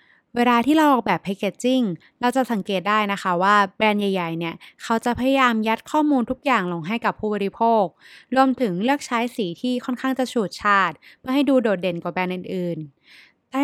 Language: Thai